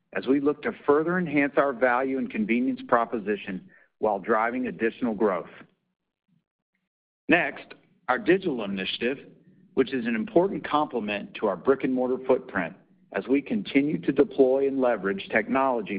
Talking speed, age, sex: 135 wpm, 50-69, male